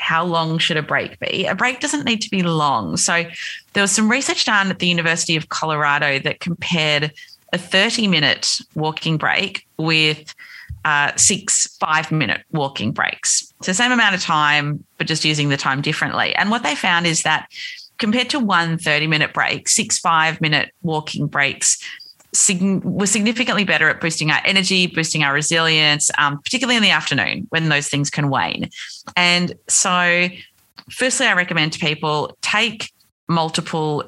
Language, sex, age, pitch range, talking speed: English, female, 30-49, 155-210 Hz, 160 wpm